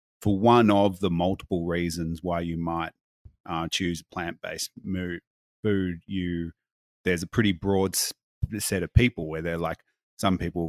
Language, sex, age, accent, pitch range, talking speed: English, male, 30-49, Australian, 85-100 Hz, 150 wpm